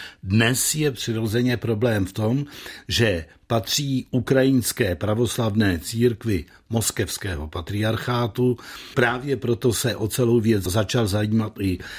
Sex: male